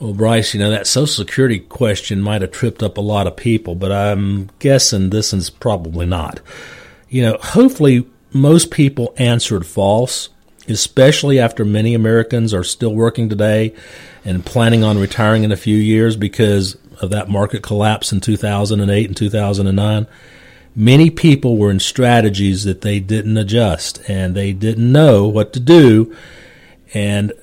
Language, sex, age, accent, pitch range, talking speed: English, male, 40-59, American, 105-130 Hz, 160 wpm